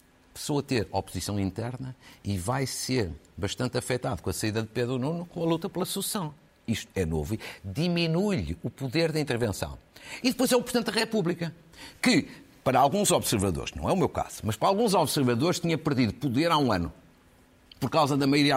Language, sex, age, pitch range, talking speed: Portuguese, male, 50-69, 120-165 Hz, 195 wpm